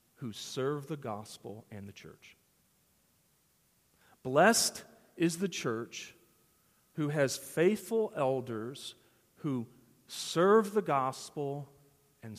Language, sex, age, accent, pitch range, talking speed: English, male, 40-59, American, 125-170 Hz, 95 wpm